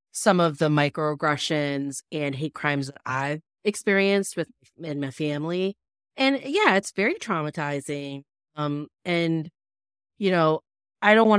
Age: 30-49